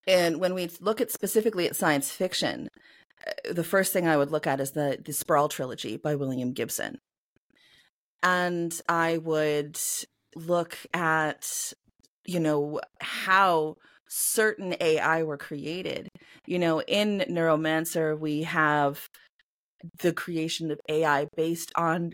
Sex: female